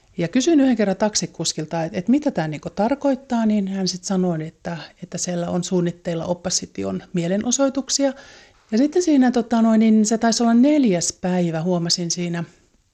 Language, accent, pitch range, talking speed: Finnish, native, 175-215 Hz, 160 wpm